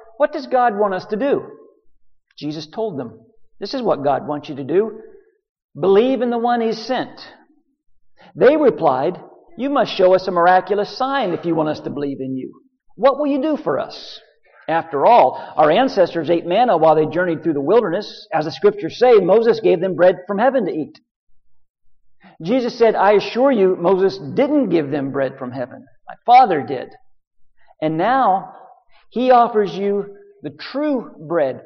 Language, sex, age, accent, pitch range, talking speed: English, male, 50-69, American, 155-255 Hz, 180 wpm